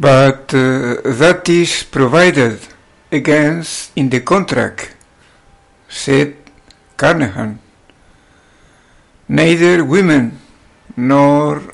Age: 60-79